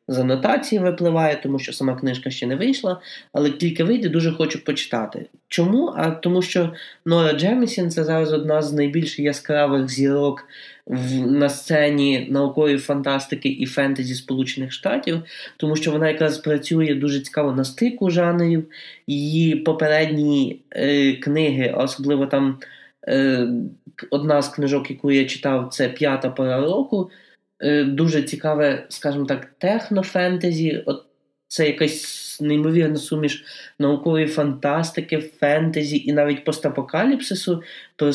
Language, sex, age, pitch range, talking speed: Ukrainian, male, 20-39, 140-160 Hz, 130 wpm